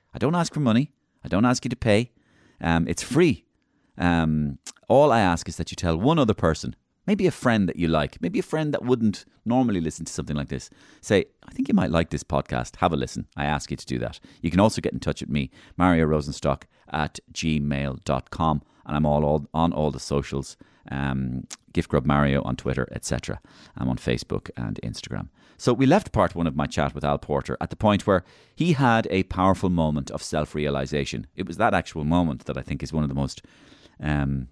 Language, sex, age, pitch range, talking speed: English, male, 30-49, 70-95 Hz, 220 wpm